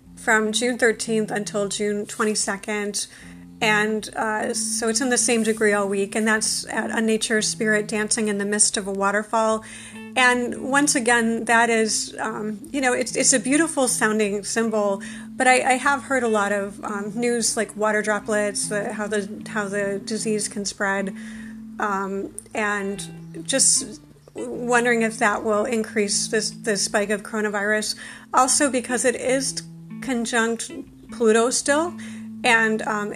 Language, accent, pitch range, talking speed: English, American, 205-235 Hz, 155 wpm